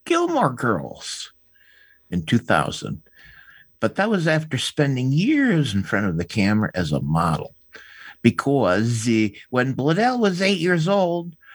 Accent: American